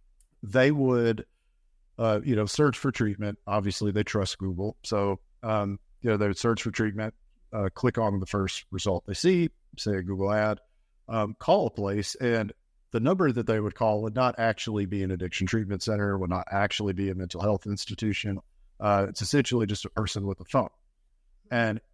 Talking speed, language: 190 wpm, English